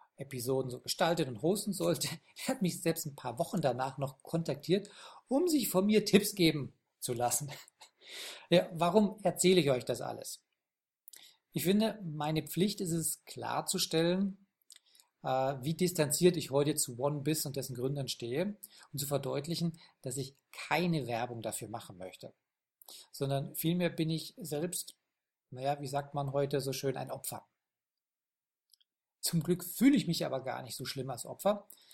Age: 40-59